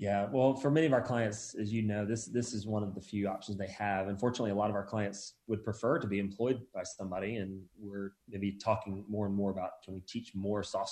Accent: American